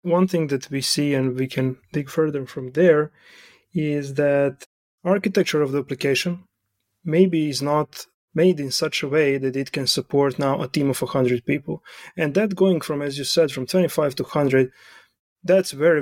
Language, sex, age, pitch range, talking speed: English, male, 30-49, 140-175 Hz, 190 wpm